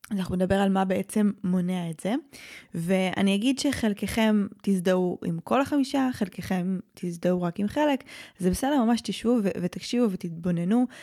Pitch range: 180-235 Hz